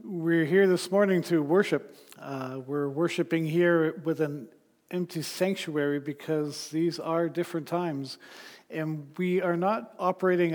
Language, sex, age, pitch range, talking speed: English, male, 50-69, 150-180 Hz, 135 wpm